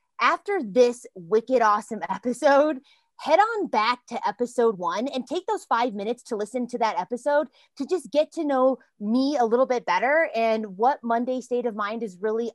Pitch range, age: 210-255 Hz, 20-39